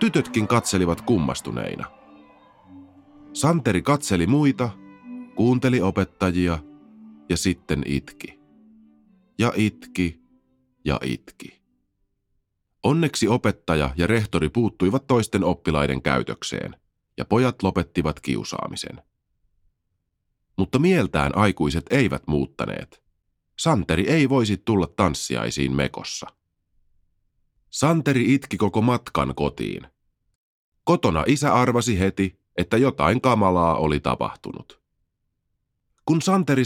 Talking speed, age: 90 wpm, 30-49